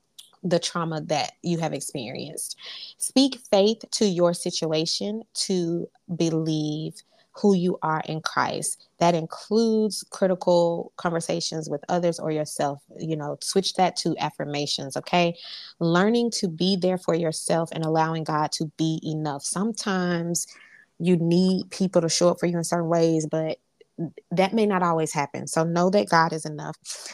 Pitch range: 160-195 Hz